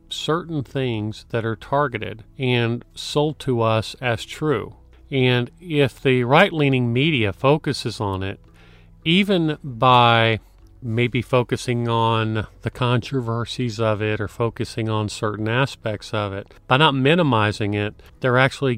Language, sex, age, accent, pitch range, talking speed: English, male, 40-59, American, 105-125 Hz, 130 wpm